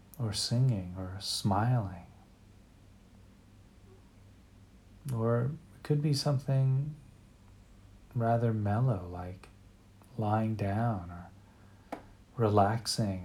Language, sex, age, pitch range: English, male, 40-59, 100-115 Hz